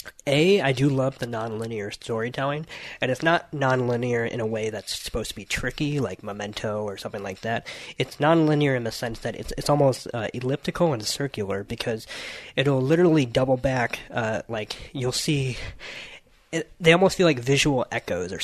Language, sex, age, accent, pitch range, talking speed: English, male, 20-39, American, 115-145 Hz, 180 wpm